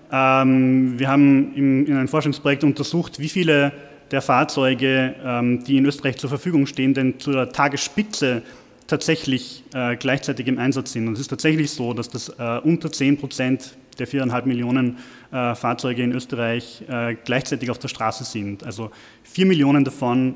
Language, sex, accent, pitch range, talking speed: German, male, German, 120-140 Hz, 145 wpm